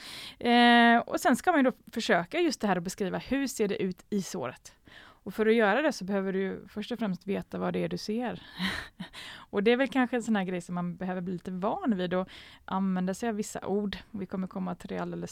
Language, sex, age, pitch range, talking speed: Swedish, female, 20-39, 185-230 Hz, 250 wpm